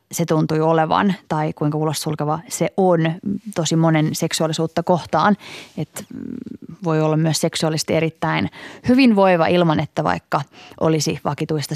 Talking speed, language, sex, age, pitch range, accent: 135 wpm, Finnish, female, 20-39, 155-190 Hz, native